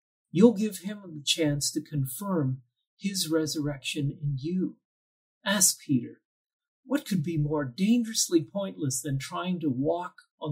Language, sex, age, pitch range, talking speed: English, male, 50-69, 140-185 Hz, 135 wpm